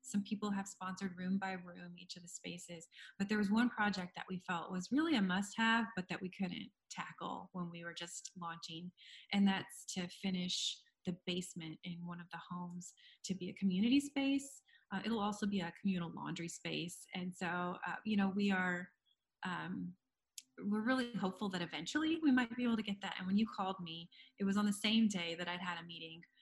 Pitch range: 175-205 Hz